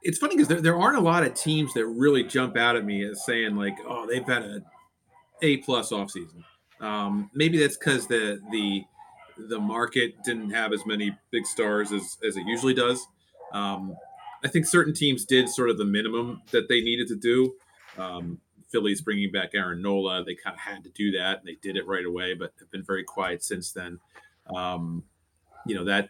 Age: 30-49